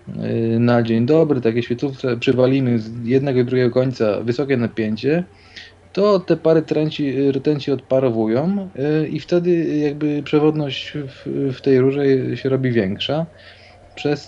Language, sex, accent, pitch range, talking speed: Polish, male, native, 115-145 Hz, 130 wpm